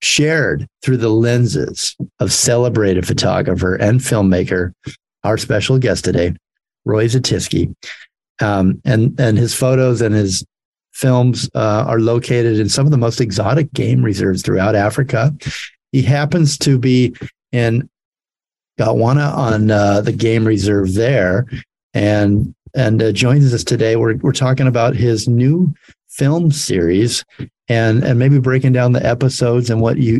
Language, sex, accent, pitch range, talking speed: English, male, American, 110-130 Hz, 145 wpm